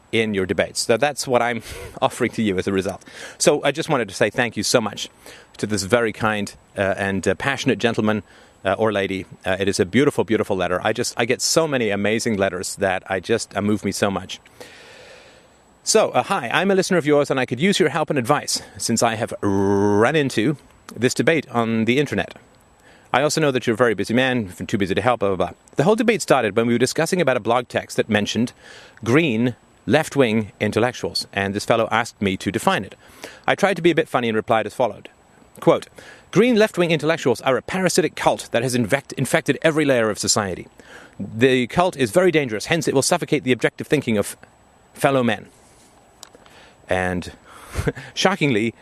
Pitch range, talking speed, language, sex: 105-145 Hz, 205 wpm, English, male